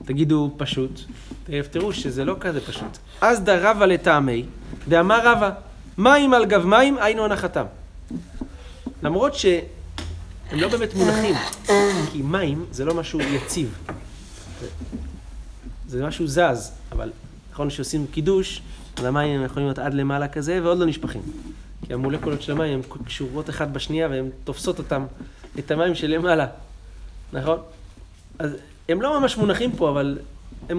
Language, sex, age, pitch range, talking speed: Hebrew, male, 30-49, 125-180 Hz, 140 wpm